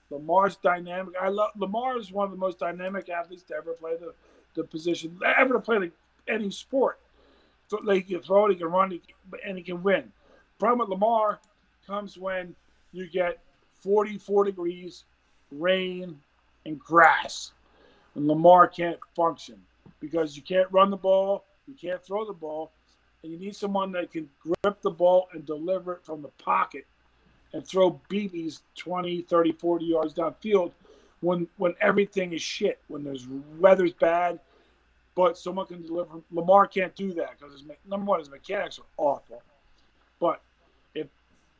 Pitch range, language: 165-195 Hz, English